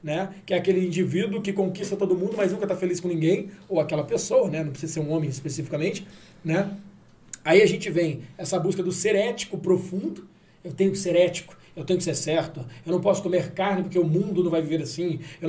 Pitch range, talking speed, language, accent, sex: 165-200 Hz, 225 wpm, Portuguese, Brazilian, male